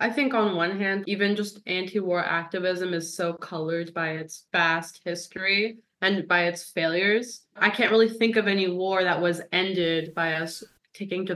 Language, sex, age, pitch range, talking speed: English, female, 20-39, 170-195 Hz, 180 wpm